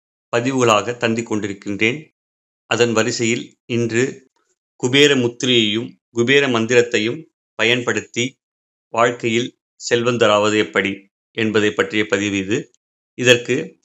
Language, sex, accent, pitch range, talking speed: Tamil, male, native, 105-125 Hz, 80 wpm